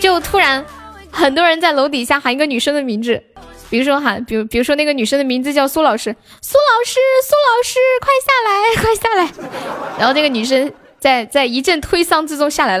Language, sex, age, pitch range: Chinese, female, 10-29, 230-305 Hz